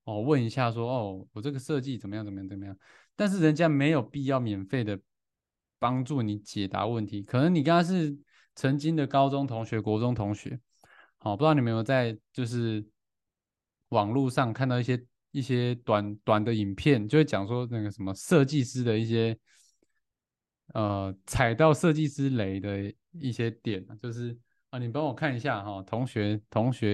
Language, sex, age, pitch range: Chinese, male, 20-39, 105-140 Hz